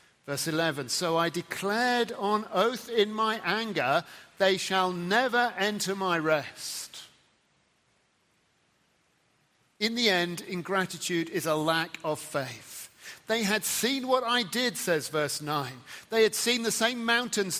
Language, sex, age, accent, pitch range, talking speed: English, male, 50-69, British, 155-225 Hz, 135 wpm